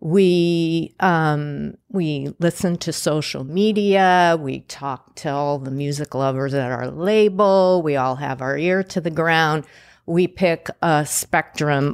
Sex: female